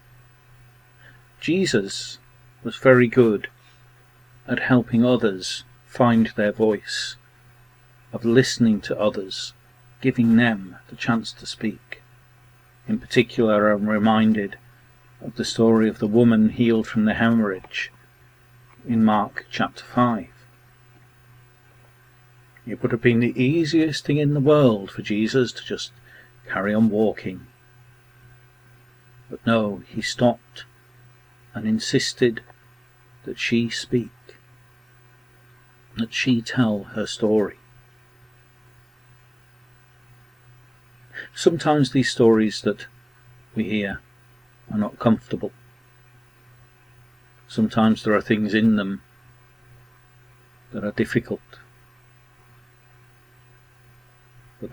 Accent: British